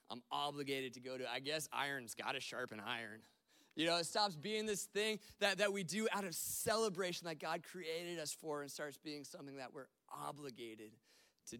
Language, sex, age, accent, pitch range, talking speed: English, male, 20-39, American, 130-170 Hz, 195 wpm